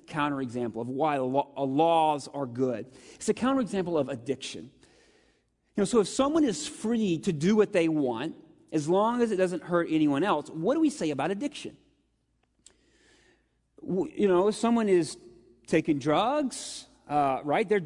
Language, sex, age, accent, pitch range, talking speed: English, male, 30-49, American, 170-255 Hz, 160 wpm